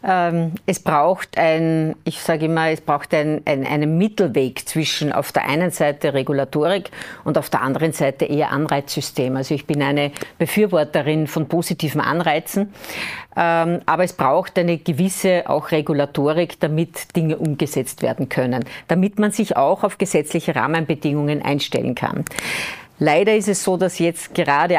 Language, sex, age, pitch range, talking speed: German, female, 50-69, 145-175 Hz, 150 wpm